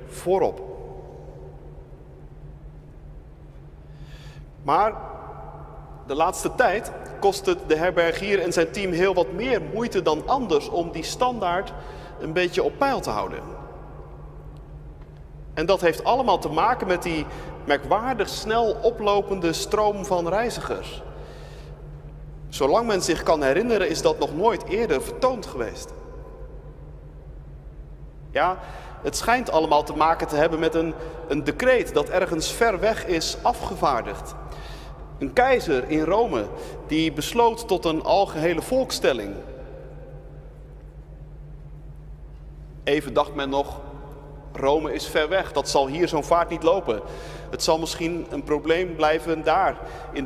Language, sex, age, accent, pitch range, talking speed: Dutch, male, 40-59, Dutch, 145-195 Hz, 125 wpm